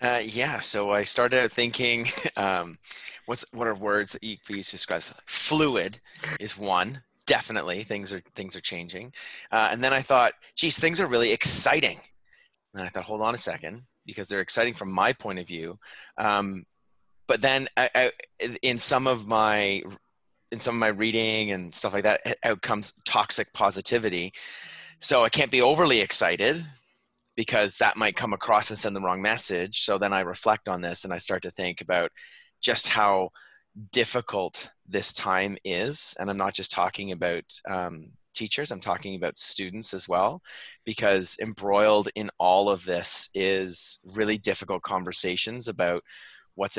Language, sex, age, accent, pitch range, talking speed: English, male, 30-49, American, 95-115 Hz, 170 wpm